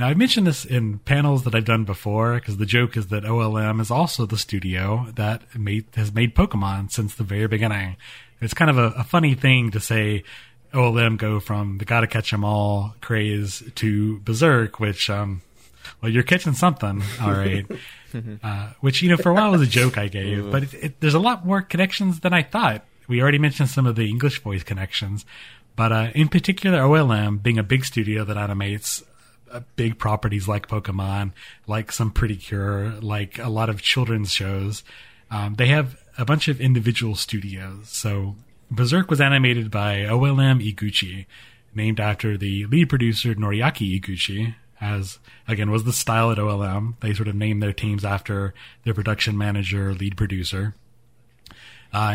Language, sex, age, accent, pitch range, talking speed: English, male, 30-49, American, 105-125 Hz, 175 wpm